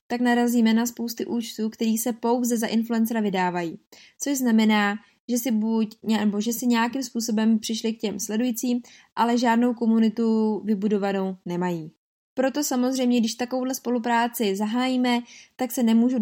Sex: female